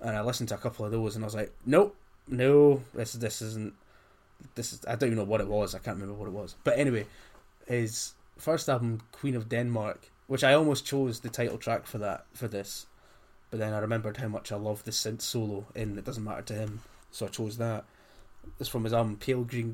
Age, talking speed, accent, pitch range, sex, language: 20-39, 235 wpm, British, 105-120 Hz, male, English